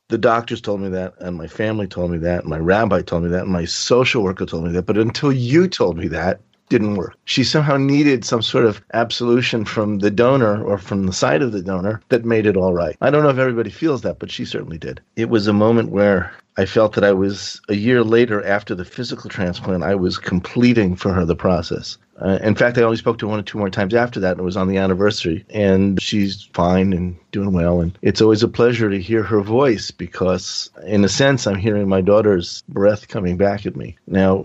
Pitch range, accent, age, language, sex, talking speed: 95-115 Hz, American, 40-59, English, male, 245 wpm